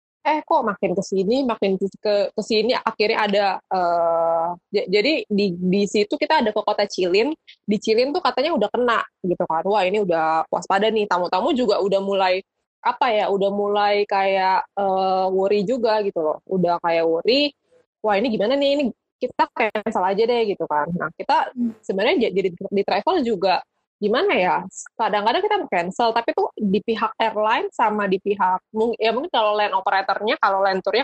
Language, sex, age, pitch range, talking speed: Indonesian, female, 20-39, 180-220 Hz, 175 wpm